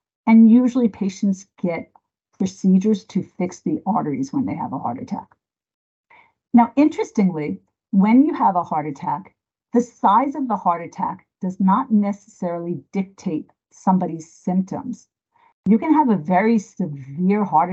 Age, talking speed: 50-69, 140 wpm